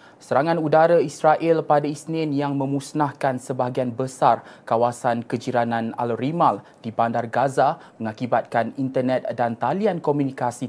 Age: 20-39